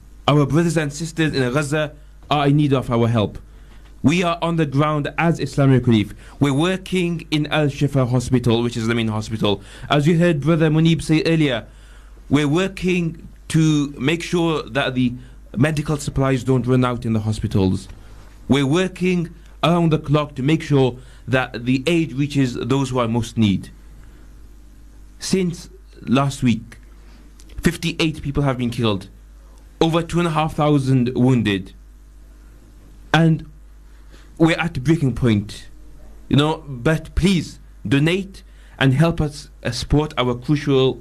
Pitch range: 115-160 Hz